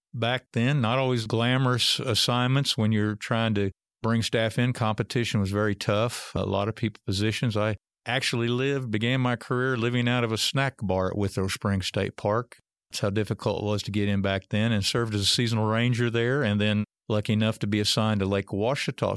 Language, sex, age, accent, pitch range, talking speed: English, male, 50-69, American, 100-120 Hz, 205 wpm